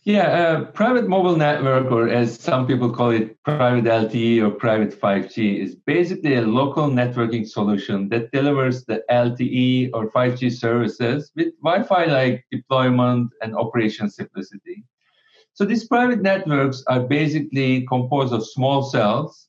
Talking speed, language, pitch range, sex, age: 140 wpm, English, 120-170 Hz, male, 50-69